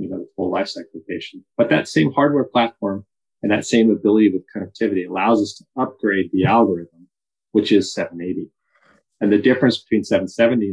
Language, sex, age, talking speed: English, male, 30-49, 180 wpm